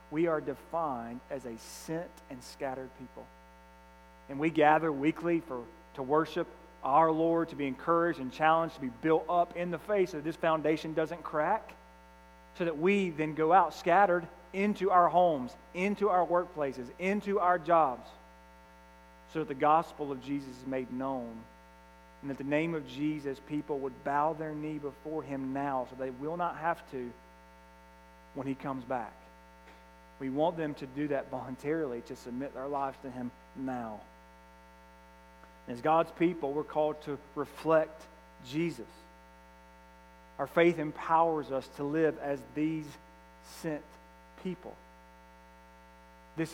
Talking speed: 150 wpm